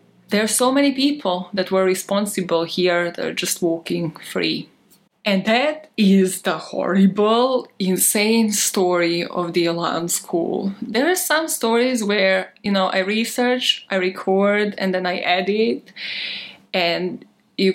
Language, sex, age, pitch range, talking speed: English, female, 20-39, 190-230 Hz, 140 wpm